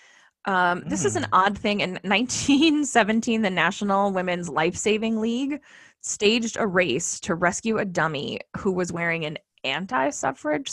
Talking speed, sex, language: 145 wpm, female, English